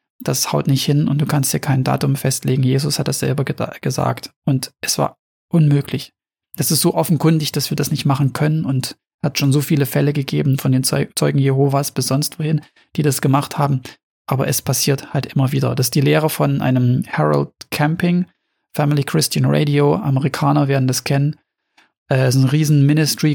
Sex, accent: male, German